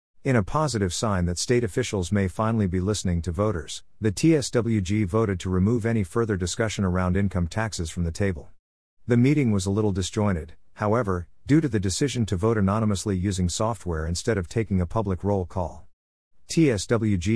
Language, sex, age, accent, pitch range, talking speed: English, male, 50-69, American, 90-110 Hz, 175 wpm